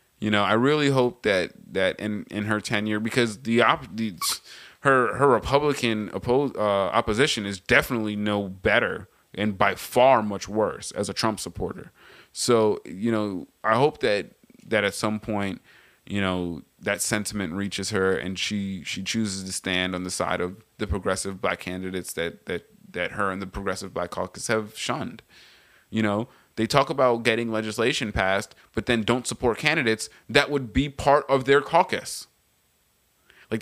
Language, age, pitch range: English, 20-39, 100-125 Hz